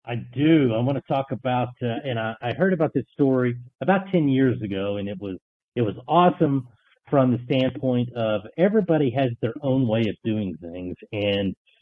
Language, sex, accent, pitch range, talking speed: English, male, American, 110-145 Hz, 195 wpm